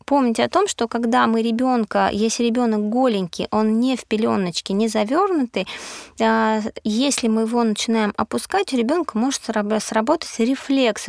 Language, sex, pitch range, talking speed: Russian, female, 215-260 Hz, 140 wpm